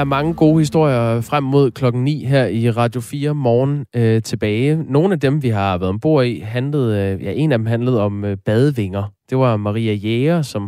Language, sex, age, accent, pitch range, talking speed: Danish, male, 20-39, native, 105-130 Hz, 215 wpm